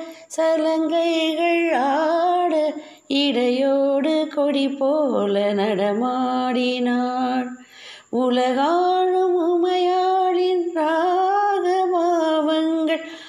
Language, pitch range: Tamil, 220-315 Hz